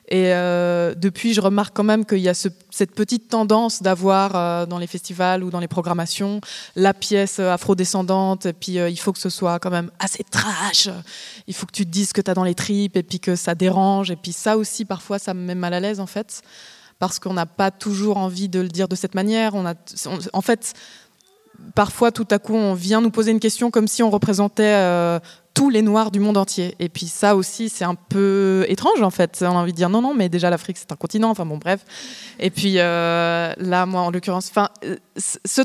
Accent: French